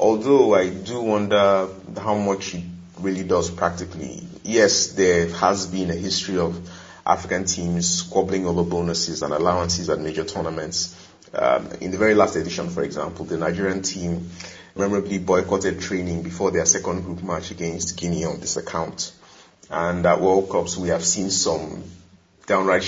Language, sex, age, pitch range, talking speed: English, male, 30-49, 85-95 Hz, 155 wpm